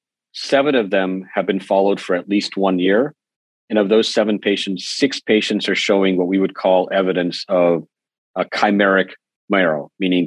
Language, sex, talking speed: English, male, 175 wpm